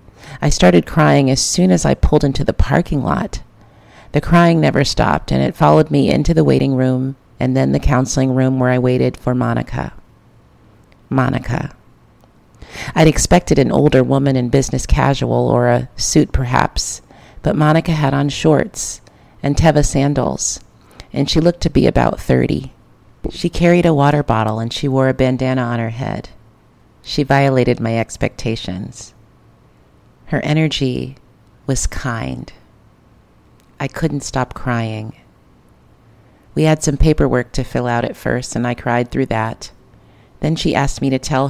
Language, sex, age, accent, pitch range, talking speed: English, female, 40-59, American, 115-145 Hz, 155 wpm